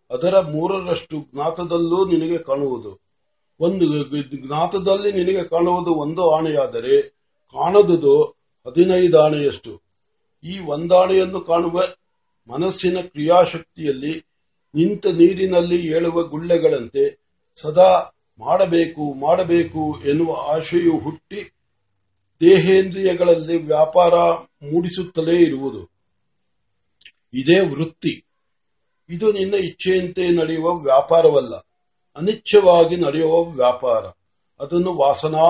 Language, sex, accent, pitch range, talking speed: Marathi, male, native, 155-185 Hz, 35 wpm